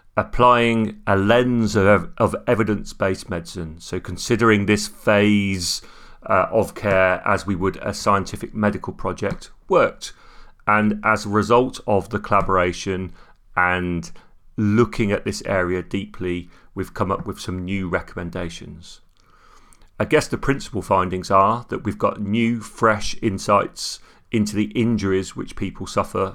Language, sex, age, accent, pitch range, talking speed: English, male, 40-59, British, 90-105 Hz, 135 wpm